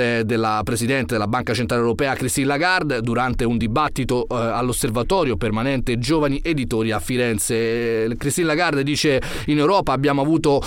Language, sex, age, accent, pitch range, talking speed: Italian, male, 30-49, native, 125-165 Hz, 135 wpm